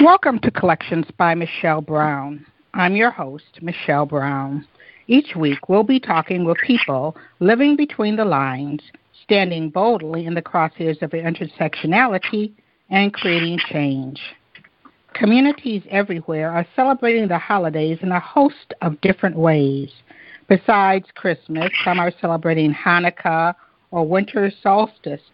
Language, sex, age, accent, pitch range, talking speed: English, female, 60-79, American, 165-220 Hz, 125 wpm